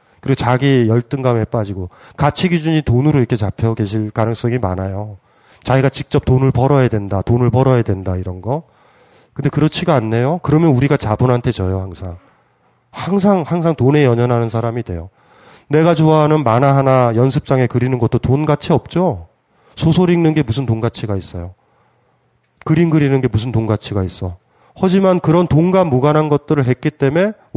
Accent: native